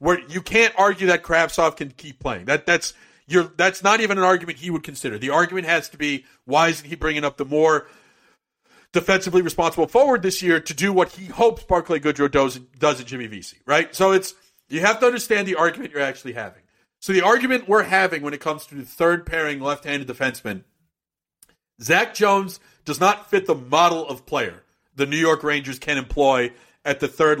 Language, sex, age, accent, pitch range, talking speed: English, male, 50-69, American, 145-190 Hz, 200 wpm